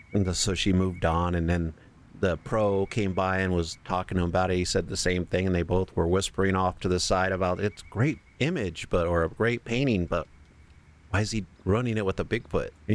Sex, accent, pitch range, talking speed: male, American, 85-100 Hz, 240 wpm